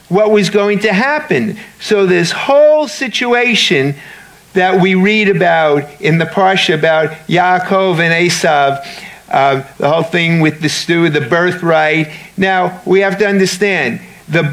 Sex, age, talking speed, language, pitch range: male, 50-69, 145 wpm, English, 140-185 Hz